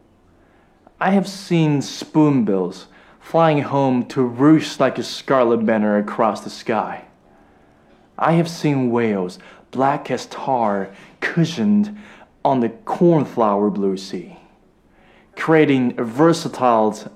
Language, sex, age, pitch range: Chinese, male, 20-39, 110-165 Hz